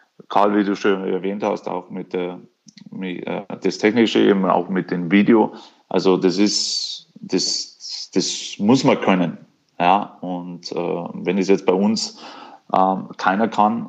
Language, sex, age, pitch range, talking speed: German, male, 30-49, 95-115 Hz, 155 wpm